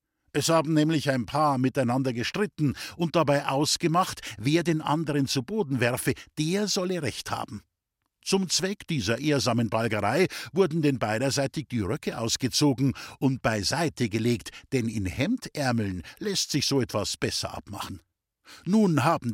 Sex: male